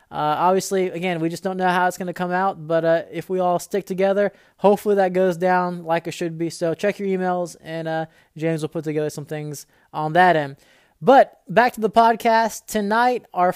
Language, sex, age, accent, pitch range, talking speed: English, male, 20-39, American, 165-200 Hz, 220 wpm